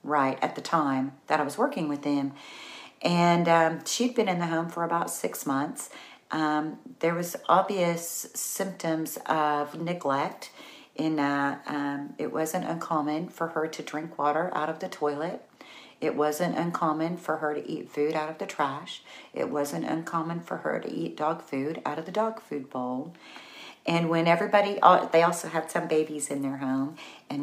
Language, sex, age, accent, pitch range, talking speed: English, female, 40-59, American, 150-185 Hz, 180 wpm